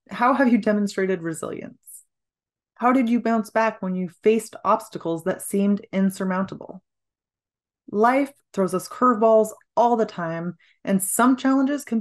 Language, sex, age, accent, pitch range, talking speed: English, female, 30-49, American, 195-240 Hz, 140 wpm